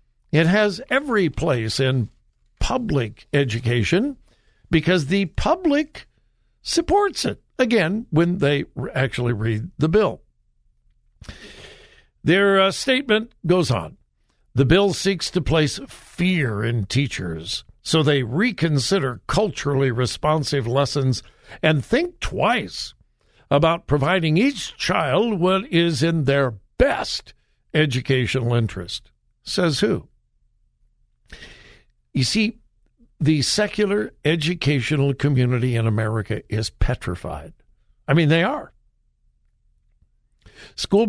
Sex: male